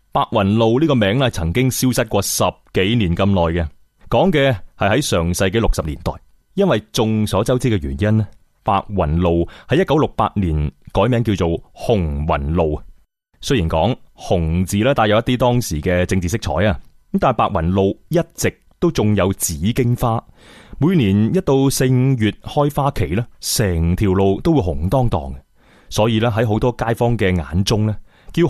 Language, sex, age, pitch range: Chinese, male, 30-49, 85-120 Hz